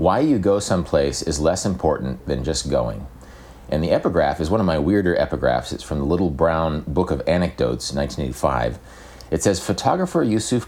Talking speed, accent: 180 wpm, American